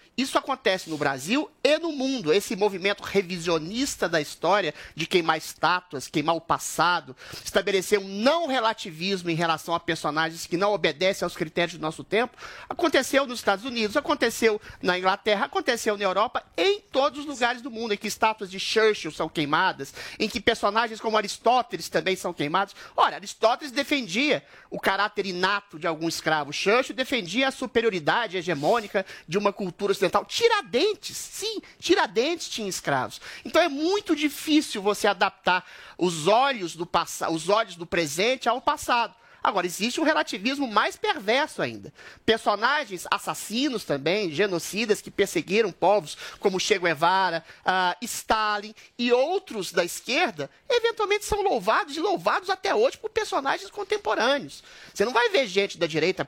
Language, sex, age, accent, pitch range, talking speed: Portuguese, male, 30-49, Brazilian, 180-255 Hz, 150 wpm